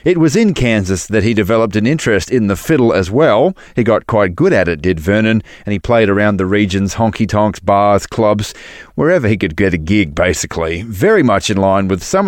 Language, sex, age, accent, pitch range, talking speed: English, male, 30-49, Australian, 100-125 Hz, 215 wpm